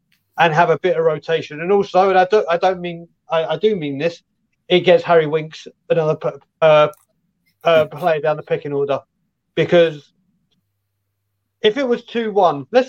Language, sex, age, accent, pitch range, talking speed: English, male, 40-59, British, 155-185 Hz, 170 wpm